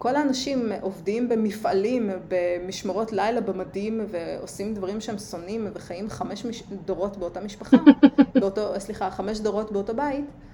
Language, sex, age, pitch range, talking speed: Hebrew, female, 30-49, 185-240 Hz, 130 wpm